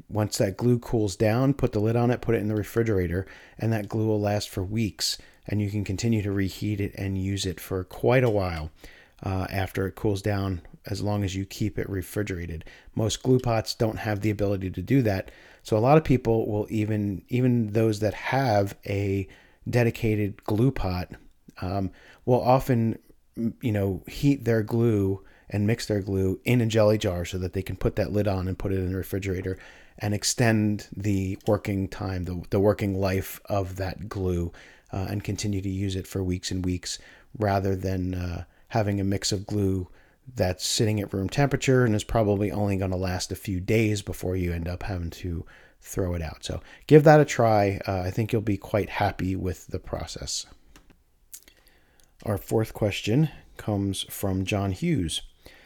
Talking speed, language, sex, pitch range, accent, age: 195 wpm, English, male, 95-110 Hz, American, 40-59